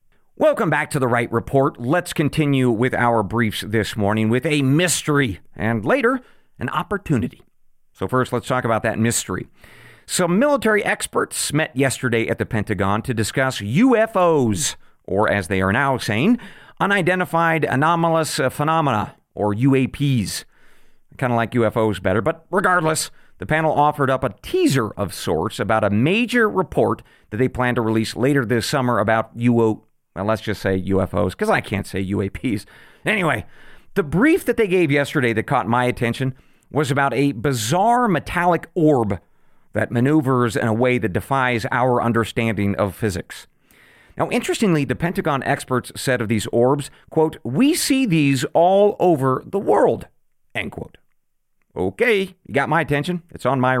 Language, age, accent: English, 40-59, American